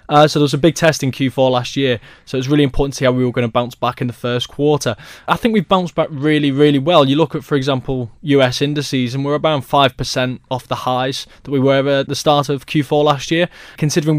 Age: 20-39